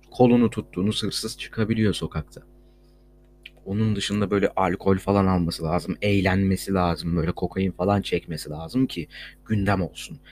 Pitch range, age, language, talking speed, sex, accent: 85-110 Hz, 30-49, Turkish, 130 wpm, male, native